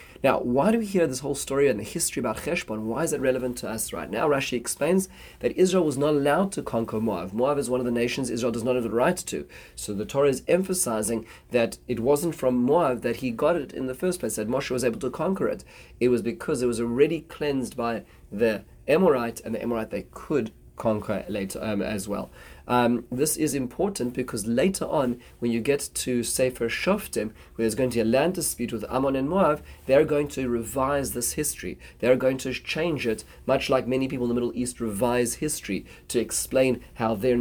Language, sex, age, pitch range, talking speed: English, male, 30-49, 115-140 Hz, 225 wpm